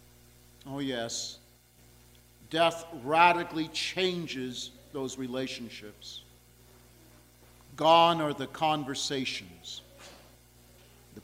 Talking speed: 65 wpm